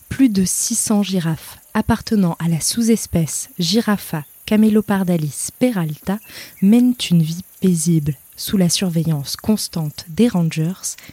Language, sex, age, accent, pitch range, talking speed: French, female, 20-39, French, 160-205 Hz, 115 wpm